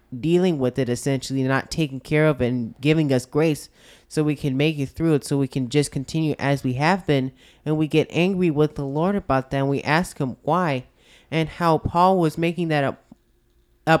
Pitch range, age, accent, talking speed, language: 130-160 Hz, 20-39, American, 220 wpm, English